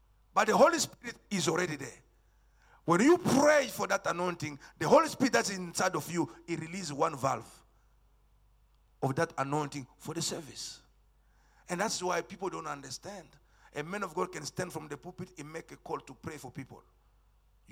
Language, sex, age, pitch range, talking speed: English, male, 50-69, 130-185 Hz, 180 wpm